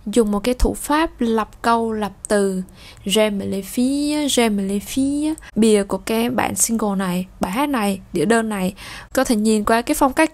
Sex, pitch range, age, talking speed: female, 210-255 Hz, 10-29, 185 wpm